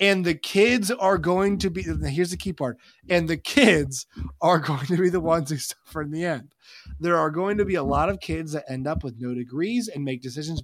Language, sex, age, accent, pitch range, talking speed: English, male, 20-39, American, 135-180 Hz, 245 wpm